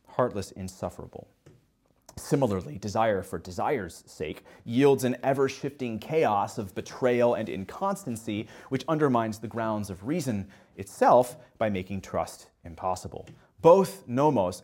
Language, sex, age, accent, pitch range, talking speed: English, male, 30-49, American, 95-120 Hz, 115 wpm